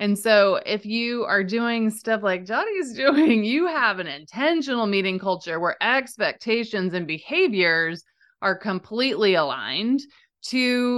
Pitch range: 185-235 Hz